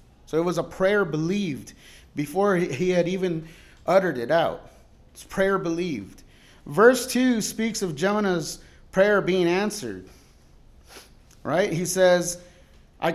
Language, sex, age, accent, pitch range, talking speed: English, male, 30-49, American, 170-230 Hz, 130 wpm